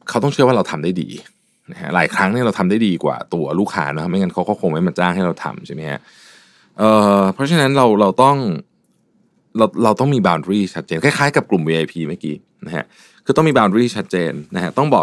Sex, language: male, Thai